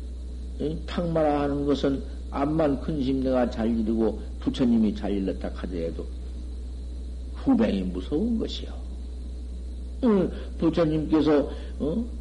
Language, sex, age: Korean, male, 60-79